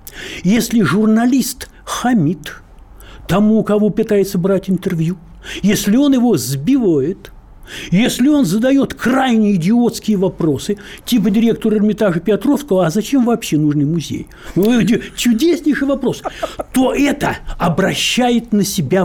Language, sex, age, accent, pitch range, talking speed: Russian, male, 60-79, native, 180-245 Hz, 105 wpm